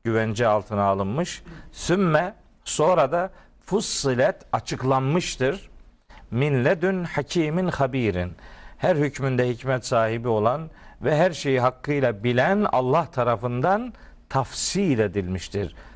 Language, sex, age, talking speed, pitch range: Turkish, male, 50-69, 95 wpm, 110-160 Hz